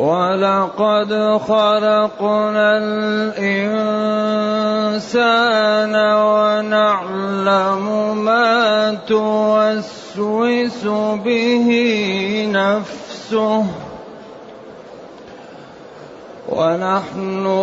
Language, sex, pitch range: Arabic, male, 195-220 Hz